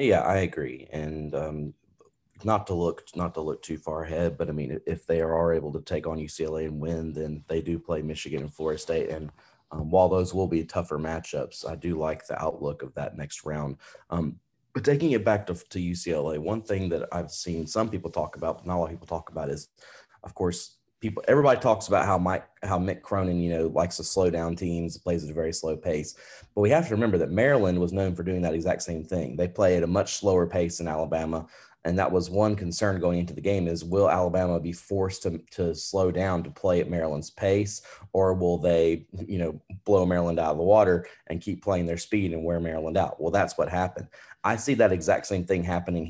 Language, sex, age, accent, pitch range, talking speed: English, male, 30-49, American, 80-95 Hz, 235 wpm